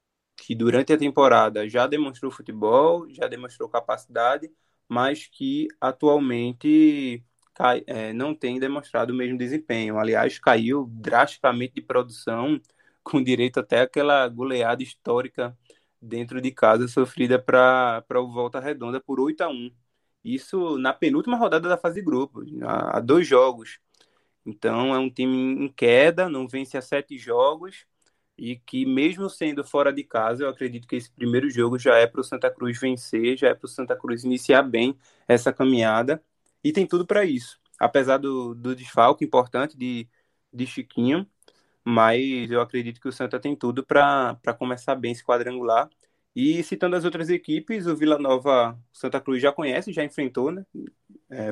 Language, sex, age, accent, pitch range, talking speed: Portuguese, male, 20-39, Brazilian, 120-150 Hz, 155 wpm